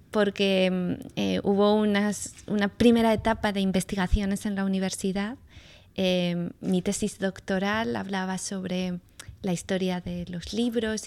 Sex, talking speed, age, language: female, 120 wpm, 20-39, Portuguese